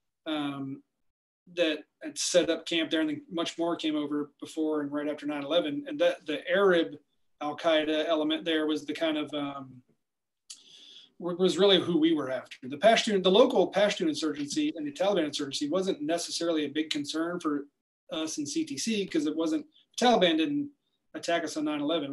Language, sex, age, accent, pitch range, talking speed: English, male, 30-49, American, 145-185 Hz, 185 wpm